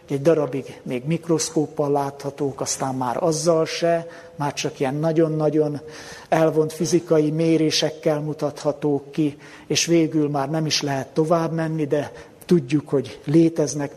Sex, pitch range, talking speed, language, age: male, 145-170 Hz, 130 wpm, Hungarian, 60-79